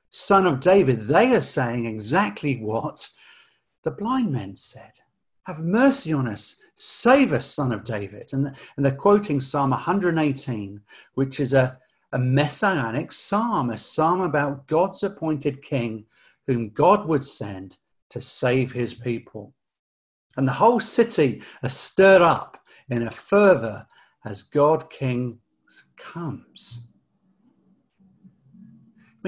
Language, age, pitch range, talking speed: English, 50-69, 115-150 Hz, 125 wpm